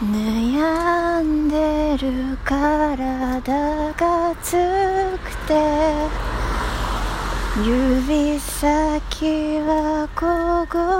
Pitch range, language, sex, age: 255-340 Hz, Japanese, female, 30-49